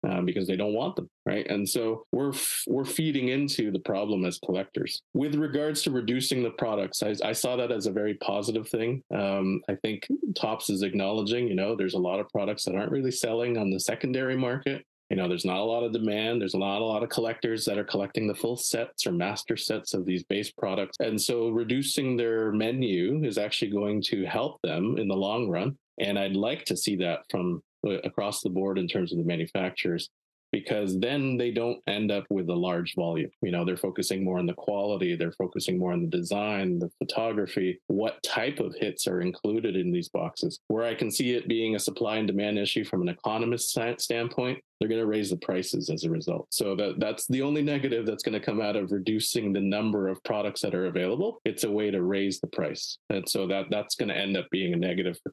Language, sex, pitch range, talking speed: French, male, 95-125 Hz, 225 wpm